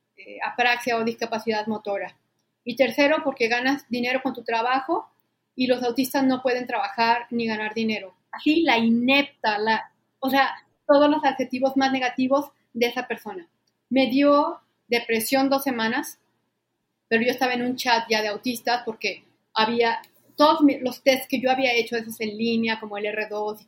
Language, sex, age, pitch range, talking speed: Spanish, female, 40-59, 225-270 Hz, 165 wpm